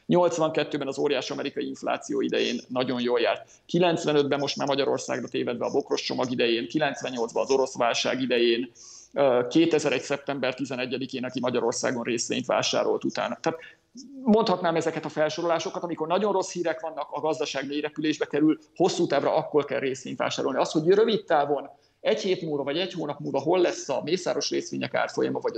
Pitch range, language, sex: 135-170 Hz, Hungarian, male